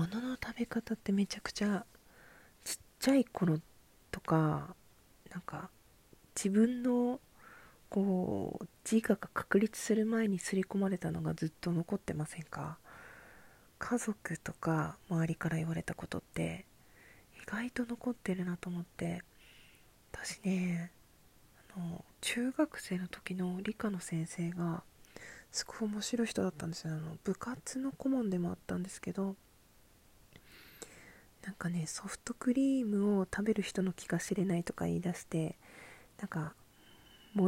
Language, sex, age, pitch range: Japanese, female, 40-59, 170-220 Hz